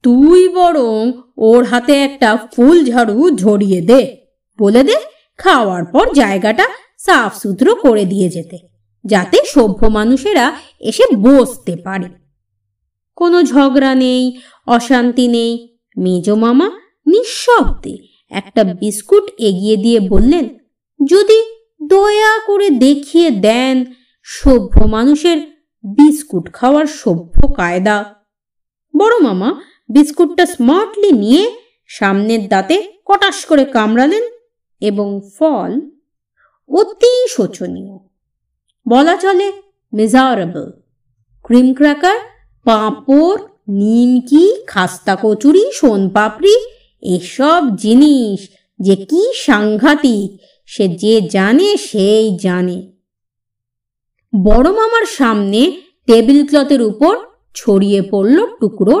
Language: Bengali